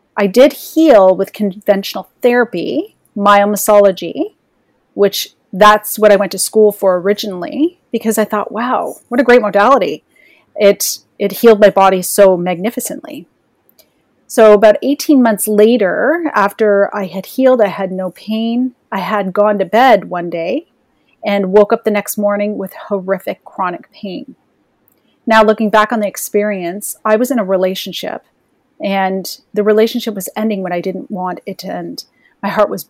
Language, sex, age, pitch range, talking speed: English, female, 30-49, 195-225 Hz, 160 wpm